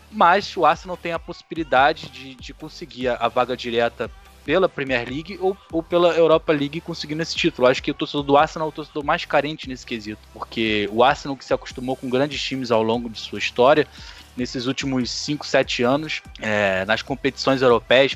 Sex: male